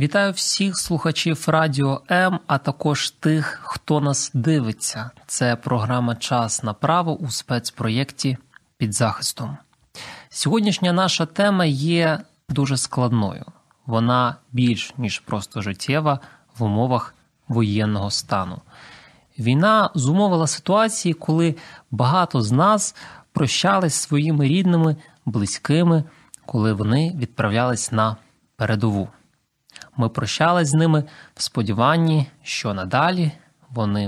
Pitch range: 115-160 Hz